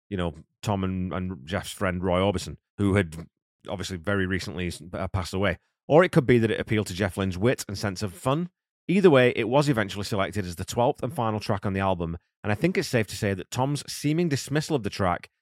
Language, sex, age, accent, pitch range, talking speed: English, male, 30-49, British, 90-115 Hz, 235 wpm